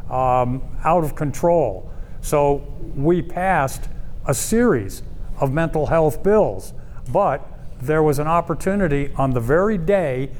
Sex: male